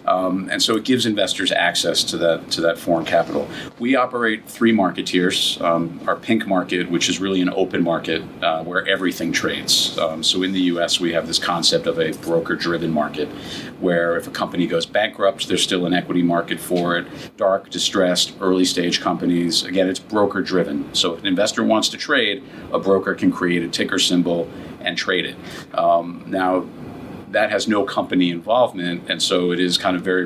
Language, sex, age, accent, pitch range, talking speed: English, male, 50-69, American, 85-95 Hz, 190 wpm